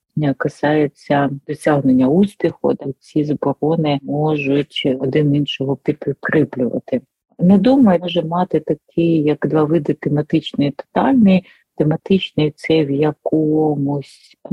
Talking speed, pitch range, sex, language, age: 100 wpm, 145-175 Hz, female, Ukrainian, 40-59